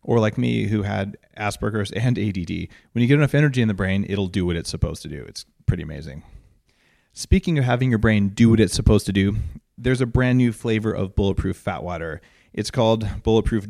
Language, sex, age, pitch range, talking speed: English, male, 30-49, 100-120 Hz, 215 wpm